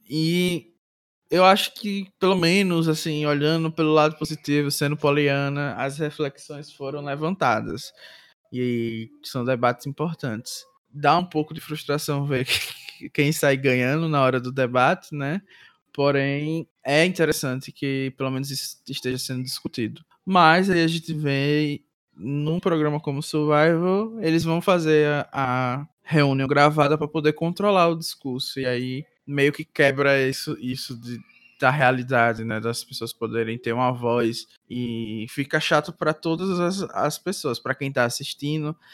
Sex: male